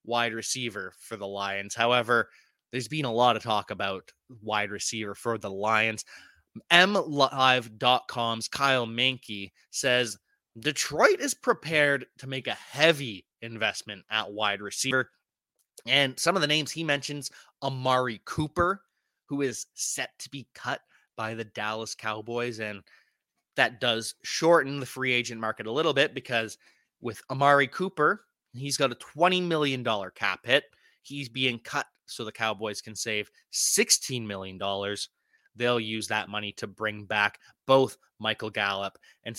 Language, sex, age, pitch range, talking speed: English, male, 20-39, 110-145 Hz, 145 wpm